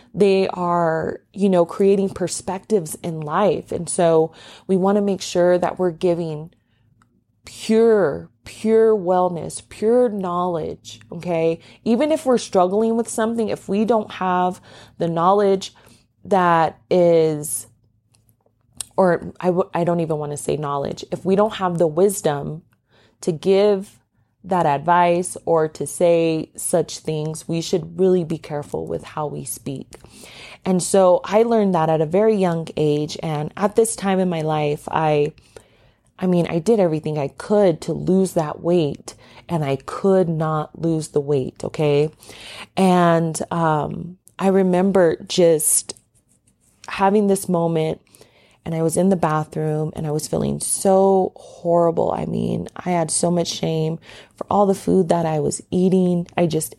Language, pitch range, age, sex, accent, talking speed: English, 155-190 Hz, 20-39, female, American, 155 wpm